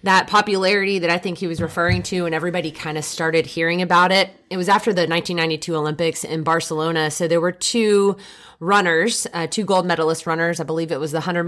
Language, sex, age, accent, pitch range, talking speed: English, female, 30-49, American, 160-205 Hz, 215 wpm